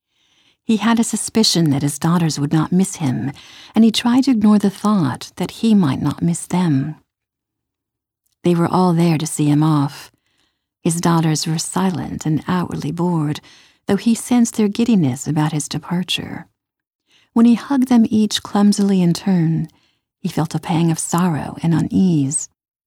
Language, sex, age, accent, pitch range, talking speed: English, female, 50-69, American, 155-190 Hz, 165 wpm